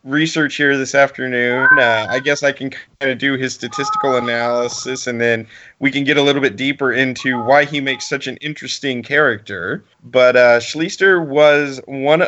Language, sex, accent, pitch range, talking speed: English, male, American, 120-145 Hz, 180 wpm